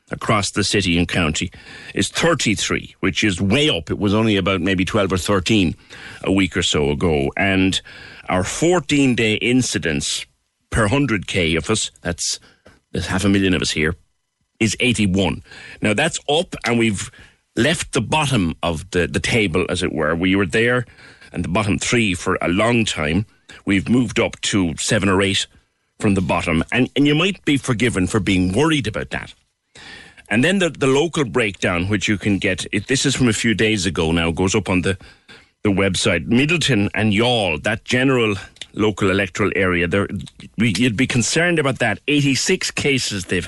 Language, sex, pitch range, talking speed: English, male, 90-115 Hz, 180 wpm